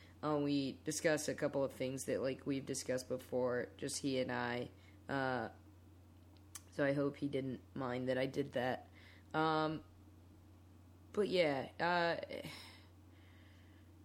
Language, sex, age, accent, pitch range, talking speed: English, female, 20-39, American, 100-155 Hz, 130 wpm